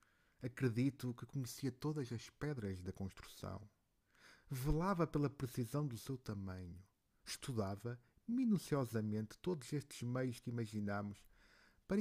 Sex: male